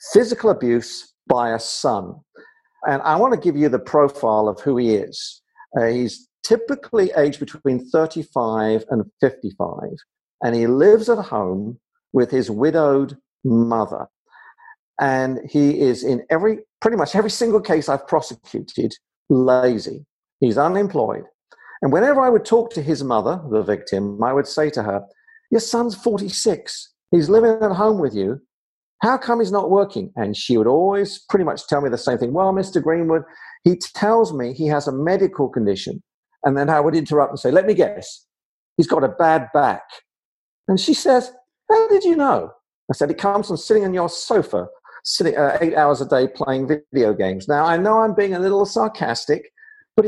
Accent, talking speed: British, 180 wpm